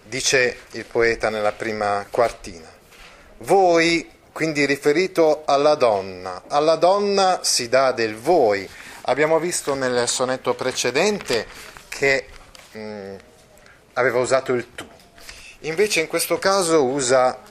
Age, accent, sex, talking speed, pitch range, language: 30-49, native, male, 115 wpm, 110-150 Hz, Italian